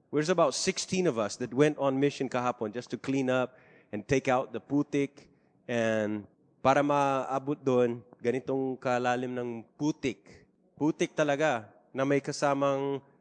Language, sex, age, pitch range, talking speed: English, male, 20-39, 105-130 Hz, 145 wpm